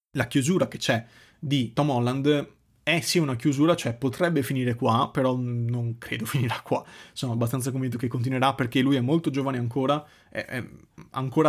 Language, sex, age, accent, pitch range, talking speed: Italian, male, 20-39, native, 120-145 Hz, 170 wpm